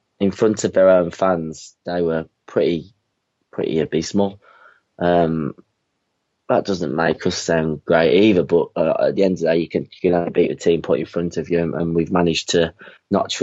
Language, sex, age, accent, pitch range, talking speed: English, male, 20-39, British, 85-100 Hz, 210 wpm